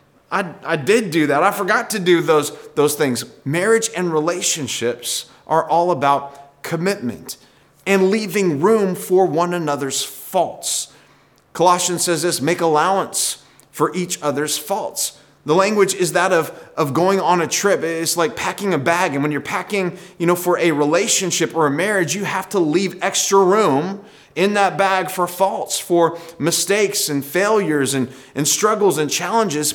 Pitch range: 145-185 Hz